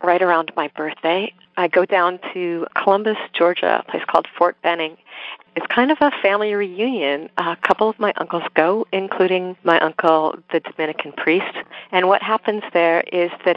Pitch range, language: 155-180 Hz, English